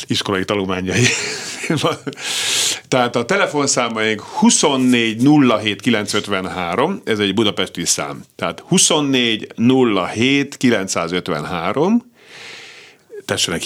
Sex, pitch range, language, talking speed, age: male, 105-150 Hz, Hungarian, 70 wpm, 50-69